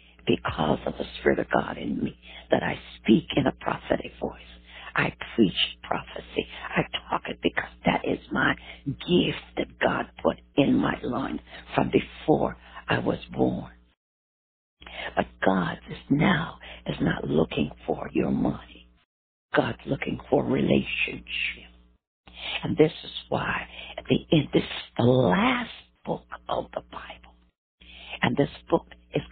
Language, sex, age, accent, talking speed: English, female, 60-79, American, 145 wpm